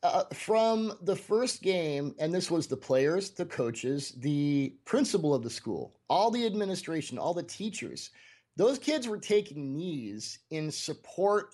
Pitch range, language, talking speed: 125-155 Hz, English, 155 wpm